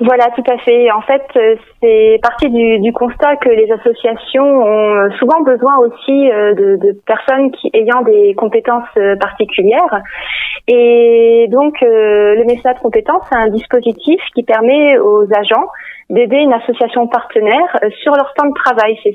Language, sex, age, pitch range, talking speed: French, female, 30-49, 210-265 Hz, 150 wpm